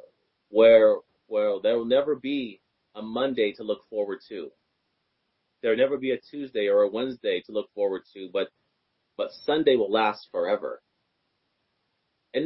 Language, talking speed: English, 155 wpm